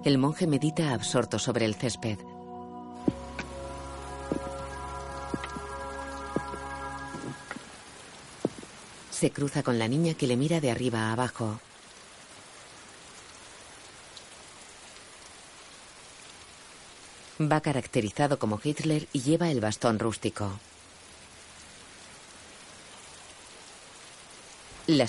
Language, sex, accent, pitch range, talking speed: Spanish, female, Spanish, 110-140 Hz, 70 wpm